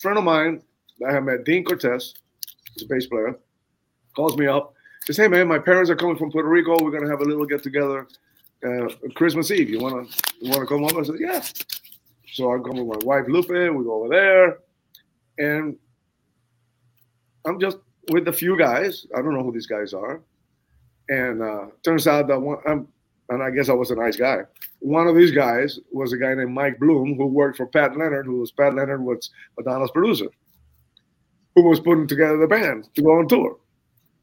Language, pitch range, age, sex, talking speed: English, 125-165 Hz, 30-49, male, 205 wpm